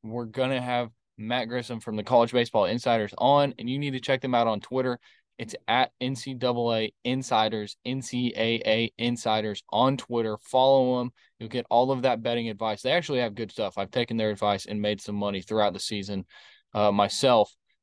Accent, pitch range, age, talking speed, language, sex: American, 105-125 Hz, 20-39, 190 wpm, English, male